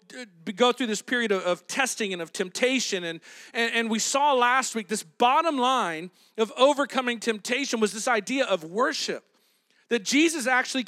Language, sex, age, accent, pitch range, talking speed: English, male, 40-59, American, 220-265 Hz, 170 wpm